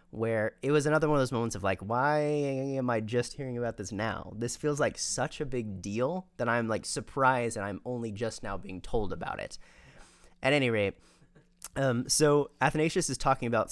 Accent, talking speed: American, 205 wpm